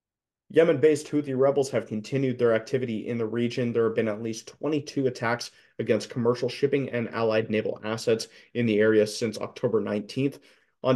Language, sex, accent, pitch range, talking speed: English, male, American, 110-125 Hz, 170 wpm